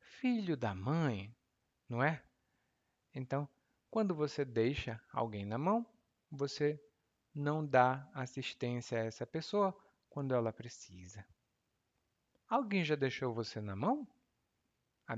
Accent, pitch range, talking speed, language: Brazilian, 115-155 Hz, 115 wpm, Portuguese